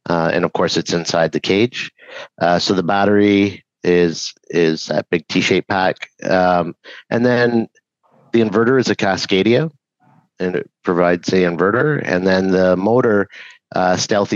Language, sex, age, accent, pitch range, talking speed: English, male, 50-69, American, 90-100 Hz, 155 wpm